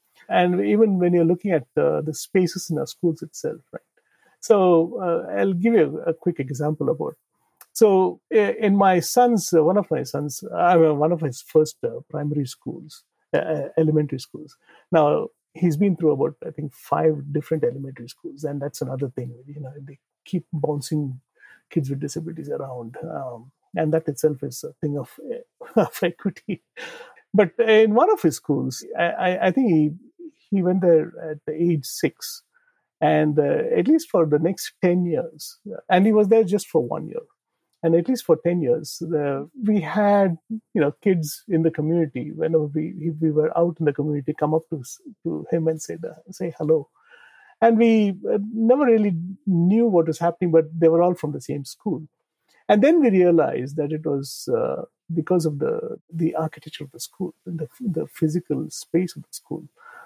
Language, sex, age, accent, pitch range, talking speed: English, male, 50-69, Indian, 155-205 Hz, 185 wpm